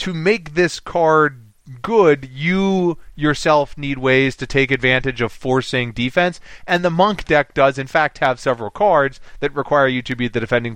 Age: 30-49